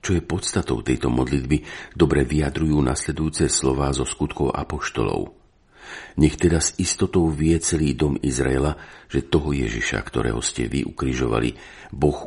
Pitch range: 65-80 Hz